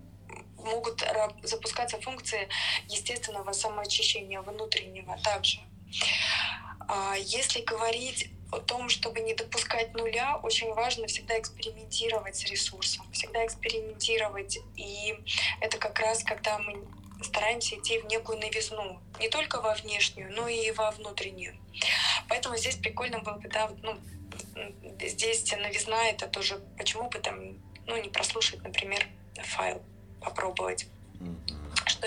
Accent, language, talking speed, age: native, Russian, 110 wpm, 20-39